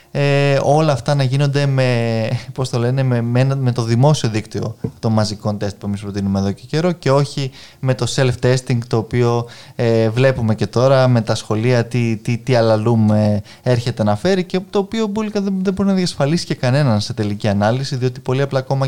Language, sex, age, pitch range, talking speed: Greek, male, 20-39, 115-145 Hz, 205 wpm